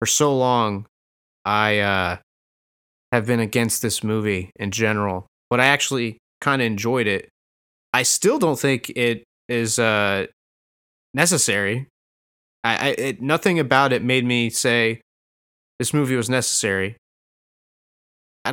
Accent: American